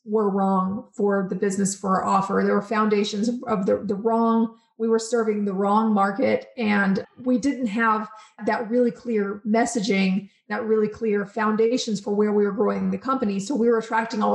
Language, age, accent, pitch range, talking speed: English, 30-49, American, 210-240 Hz, 190 wpm